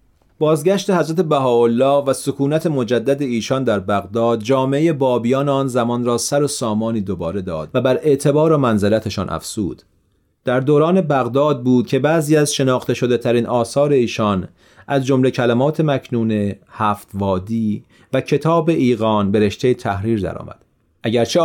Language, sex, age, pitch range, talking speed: Persian, male, 40-59, 110-140 Hz, 145 wpm